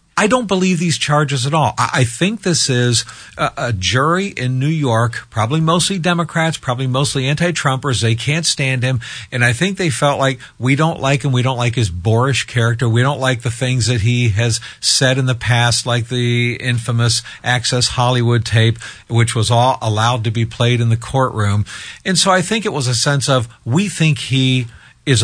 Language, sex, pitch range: English, male, 115-150 Hz